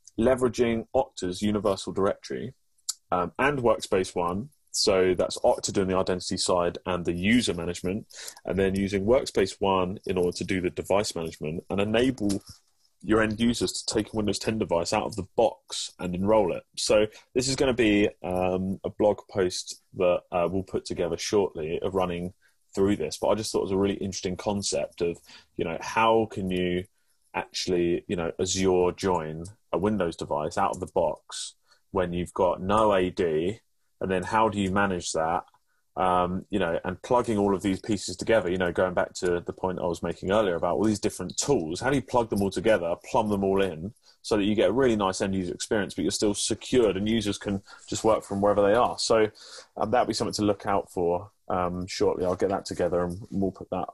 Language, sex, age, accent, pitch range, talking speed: English, male, 30-49, British, 90-105 Hz, 210 wpm